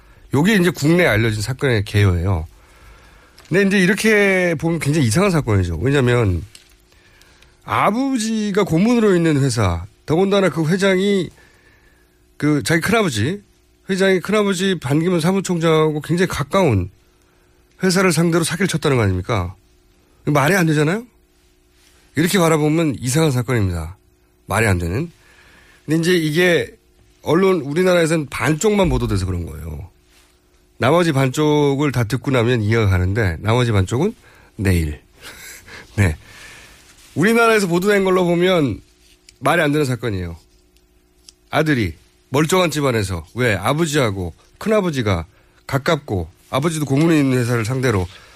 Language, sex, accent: Korean, male, native